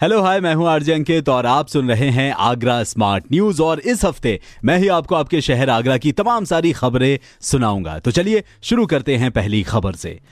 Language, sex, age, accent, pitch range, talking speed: Hindi, male, 30-49, native, 120-165 Hz, 210 wpm